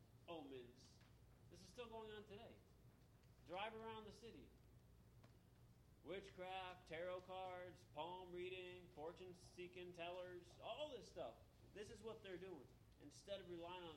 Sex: male